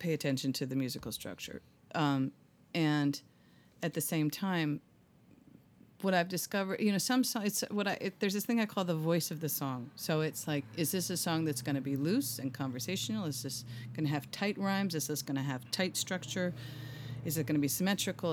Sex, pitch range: female, 135-170 Hz